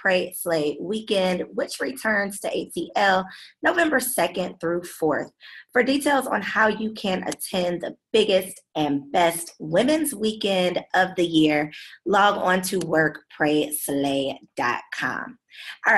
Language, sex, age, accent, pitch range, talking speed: English, female, 20-39, American, 155-215 Hz, 120 wpm